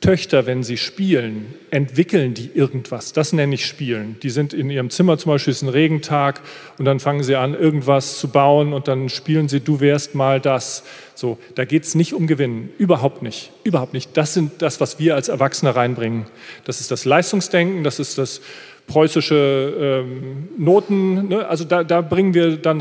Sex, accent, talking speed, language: male, German, 195 wpm, German